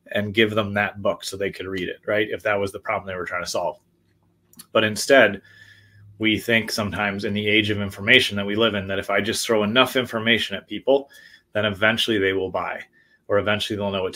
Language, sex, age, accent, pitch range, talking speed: English, male, 30-49, American, 100-110 Hz, 230 wpm